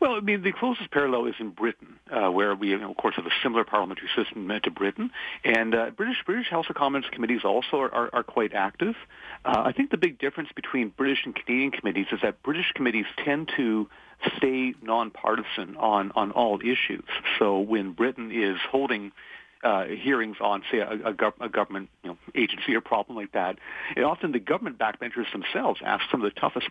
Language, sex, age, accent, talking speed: English, male, 40-59, American, 200 wpm